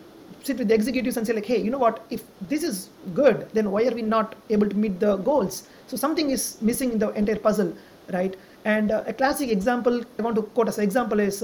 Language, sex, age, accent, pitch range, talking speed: English, male, 30-49, Indian, 215-250 Hz, 245 wpm